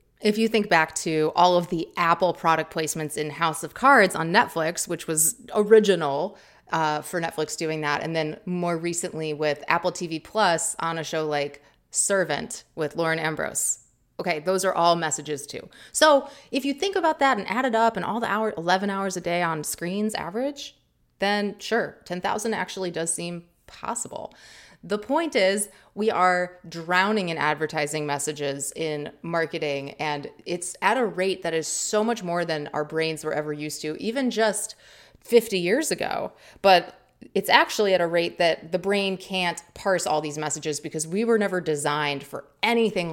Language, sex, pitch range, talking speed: English, female, 160-205 Hz, 180 wpm